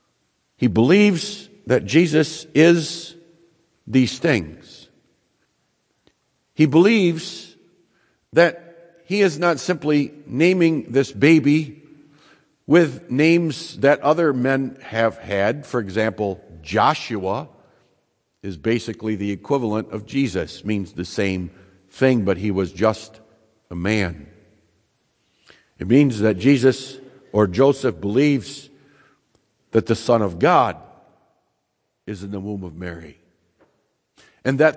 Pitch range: 110-150 Hz